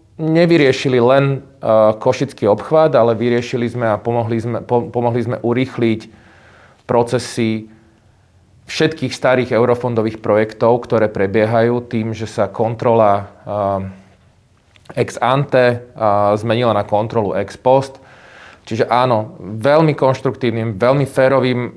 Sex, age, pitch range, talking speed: male, 30-49, 105-125 Hz, 110 wpm